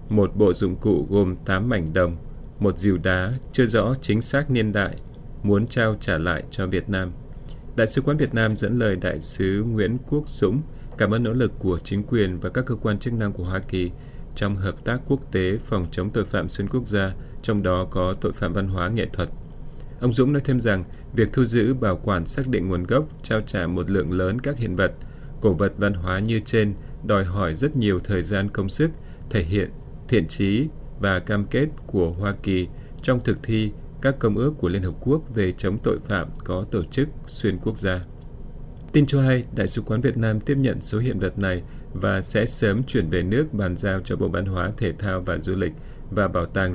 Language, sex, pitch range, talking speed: Vietnamese, male, 95-120 Hz, 220 wpm